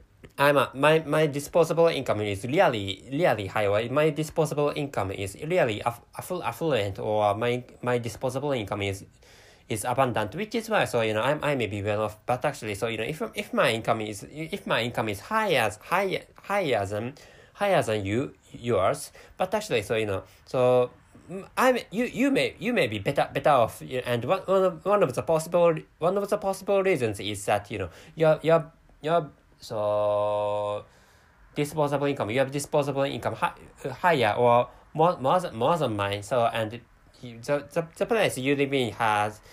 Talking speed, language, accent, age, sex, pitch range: 190 wpm, English, Japanese, 20-39, male, 110-170 Hz